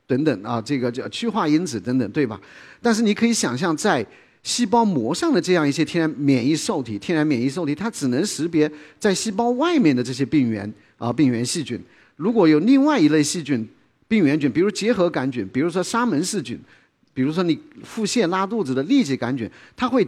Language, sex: Chinese, male